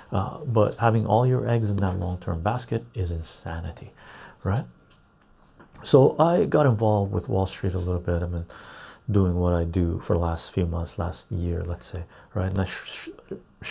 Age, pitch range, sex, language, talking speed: 40-59, 90-115 Hz, male, English, 195 wpm